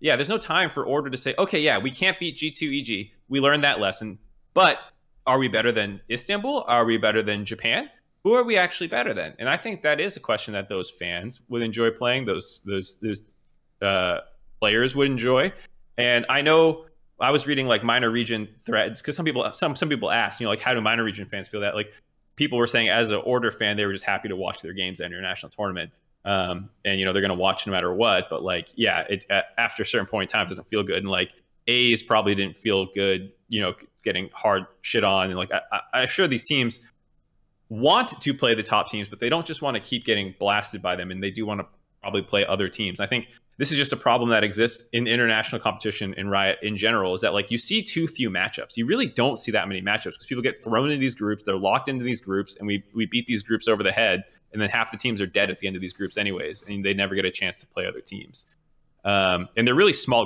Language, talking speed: English, 255 wpm